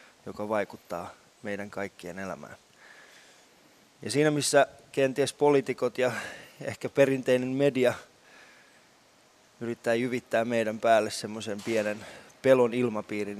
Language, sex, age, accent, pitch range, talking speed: Finnish, male, 20-39, native, 100-120 Hz, 100 wpm